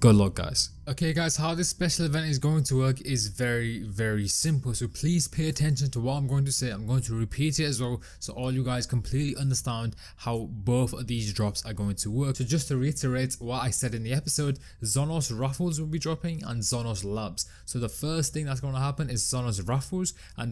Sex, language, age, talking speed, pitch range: male, English, 20-39, 230 wpm, 115-145 Hz